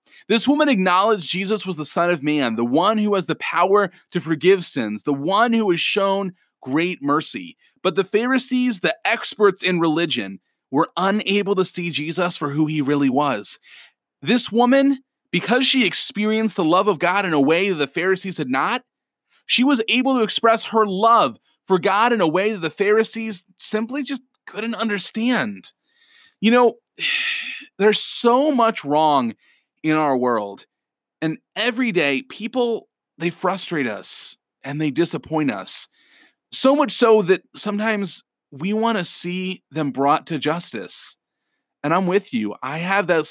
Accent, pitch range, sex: American, 155-230 Hz, male